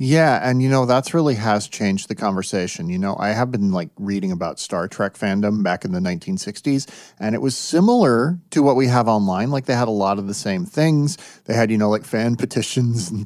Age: 30-49